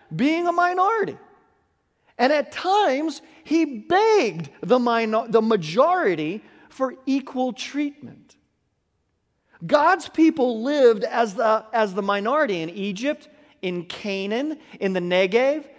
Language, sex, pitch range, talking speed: English, male, 195-295 Hz, 115 wpm